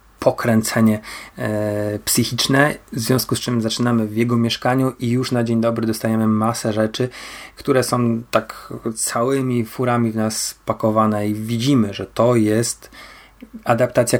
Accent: native